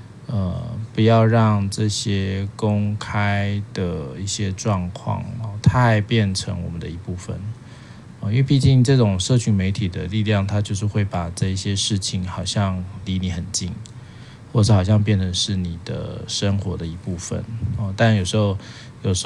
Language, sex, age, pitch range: Chinese, male, 20-39, 95-115 Hz